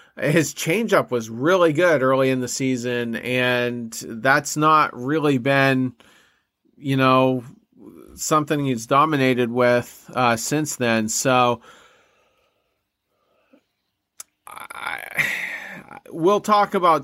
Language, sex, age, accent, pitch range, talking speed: English, male, 30-49, American, 120-155 Hz, 95 wpm